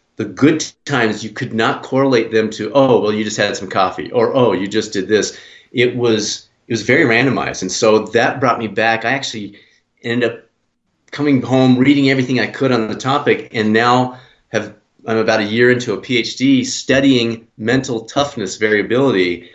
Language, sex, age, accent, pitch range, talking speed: English, male, 40-59, American, 100-125 Hz, 185 wpm